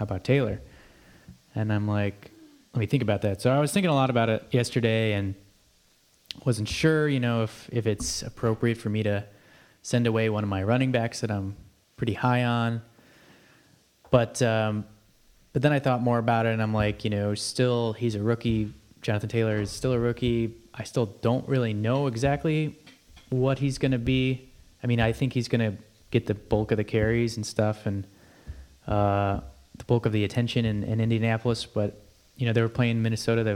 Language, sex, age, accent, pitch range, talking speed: English, male, 20-39, American, 105-125 Hz, 200 wpm